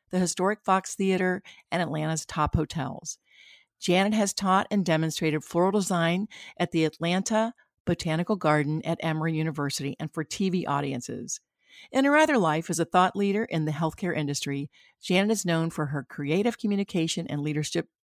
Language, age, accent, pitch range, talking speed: English, 50-69, American, 165-215 Hz, 160 wpm